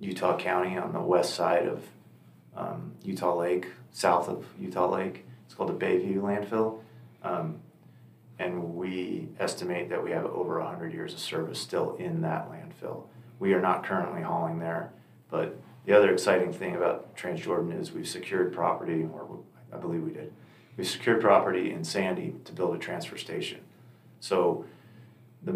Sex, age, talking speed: male, 30-49, 160 wpm